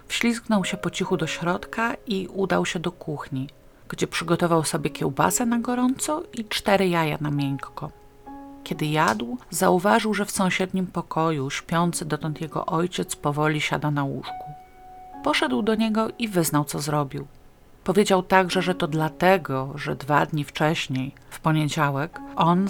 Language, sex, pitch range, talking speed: Polish, female, 145-190 Hz, 150 wpm